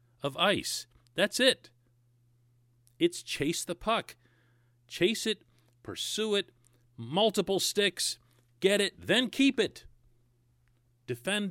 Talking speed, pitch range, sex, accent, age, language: 105 wpm, 120-165 Hz, male, American, 40-59, English